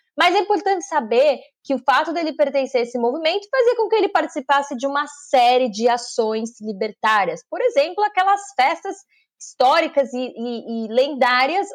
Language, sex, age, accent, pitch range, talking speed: Portuguese, female, 20-39, Brazilian, 250-330 Hz, 165 wpm